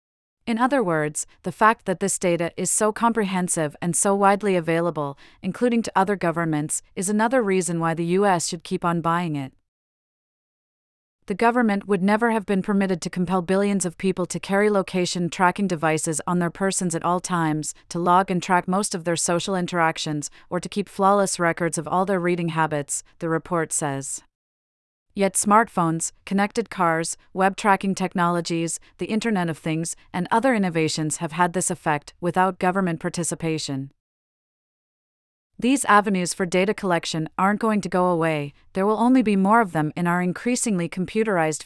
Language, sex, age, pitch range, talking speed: English, female, 30-49, 165-200 Hz, 165 wpm